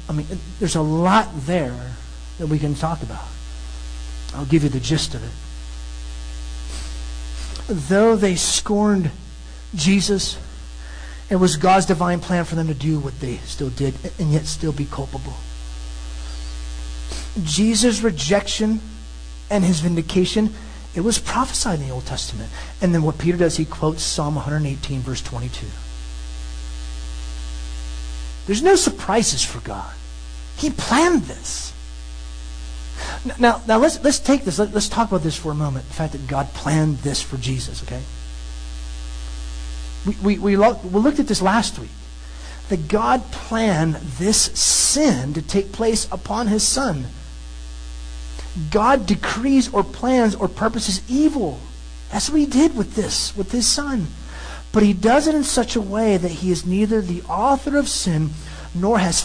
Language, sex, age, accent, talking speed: English, male, 40-59, American, 150 wpm